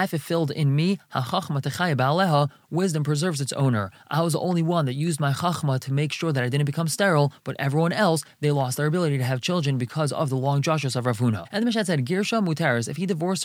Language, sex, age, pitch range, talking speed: English, male, 20-39, 140-175 Hz, 235 wpm